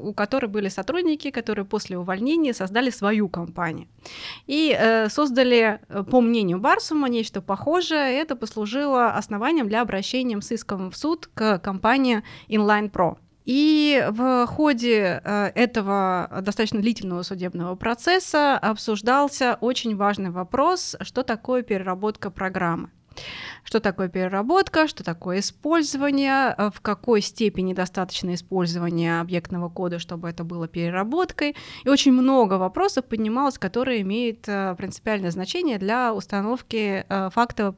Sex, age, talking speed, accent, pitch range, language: female, 20-39, 120 wpm, native, 195-255 Hz, Russian